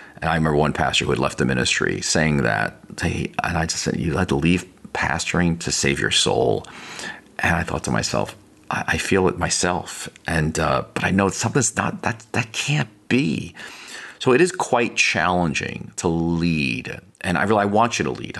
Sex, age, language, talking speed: male, 40-59, English, 190 wpm